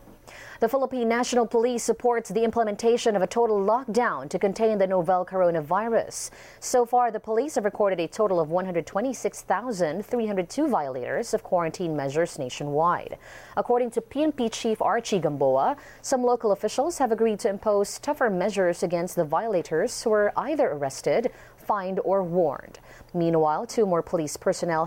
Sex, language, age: female, English, 30-49